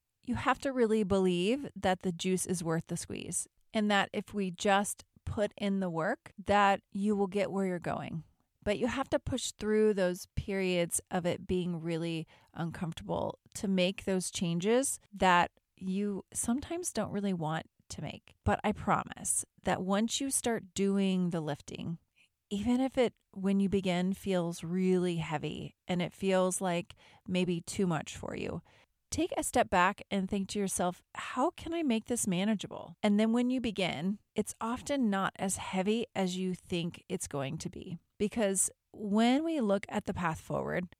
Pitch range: 180-215 Hz